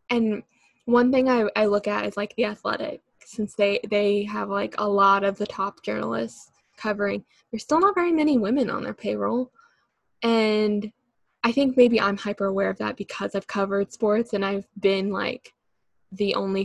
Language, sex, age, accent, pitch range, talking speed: English, female, 10-29, American, 200-240 Hz, 185 wpm